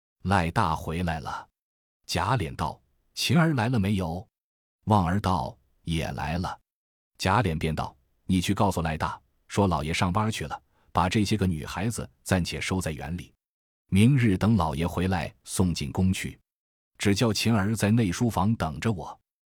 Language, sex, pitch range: Chinese, male, 80-110 Hz